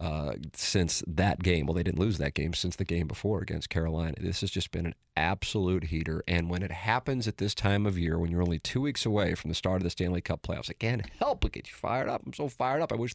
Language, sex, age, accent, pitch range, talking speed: English, male, 40-59, American, 85-105 Hz, 275 wpm